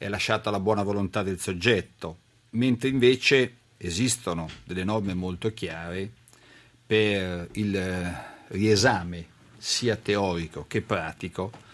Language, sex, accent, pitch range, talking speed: Italian, male, native, 95-115 Hz, 105 wpm